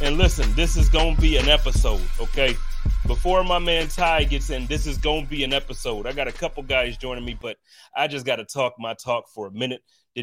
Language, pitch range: English, 130-170 Hz